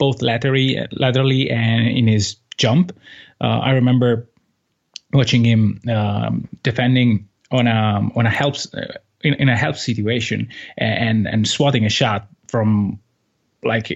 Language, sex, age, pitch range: English, male, 30-49, 110-140 Hz